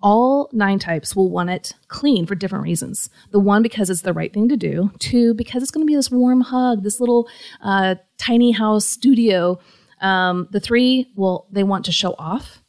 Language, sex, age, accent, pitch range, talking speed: English, female, 30-49, American, 185-250 Hz, 205 wpm